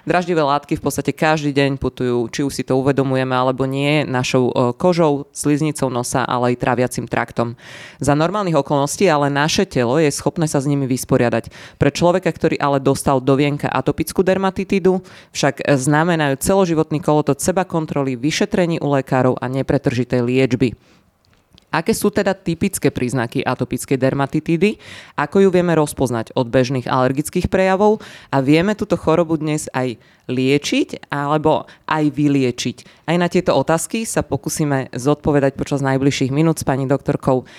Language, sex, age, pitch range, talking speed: Slovak, female, 20-39, 135-160 Hz, 145 wpm